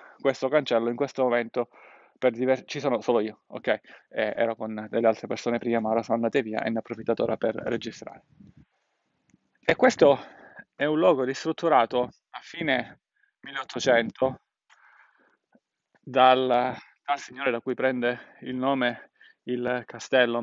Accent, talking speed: native, 145 wpm